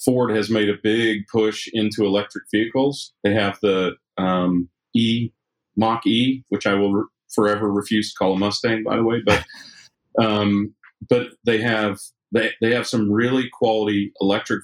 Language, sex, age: English, male, 40-59